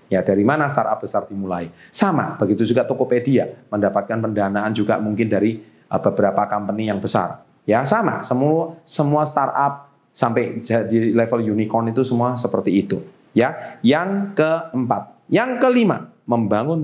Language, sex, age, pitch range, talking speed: Indonesian, male, 30-49, 100-130 Hz, 135 wpm